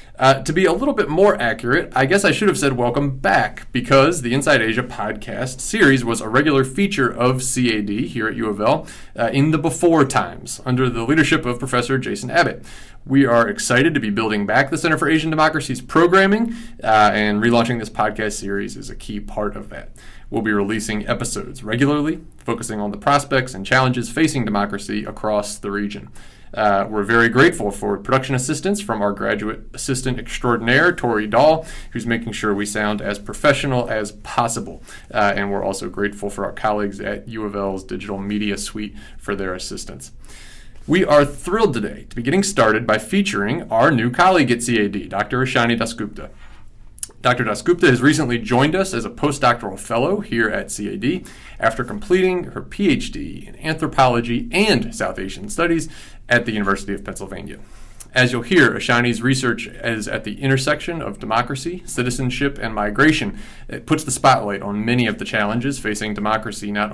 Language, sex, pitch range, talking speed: English, male, 105-140 Hz, 175 wpm